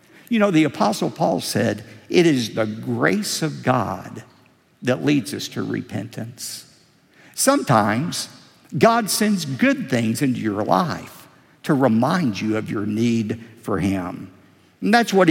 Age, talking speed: 50-69, 140 wpm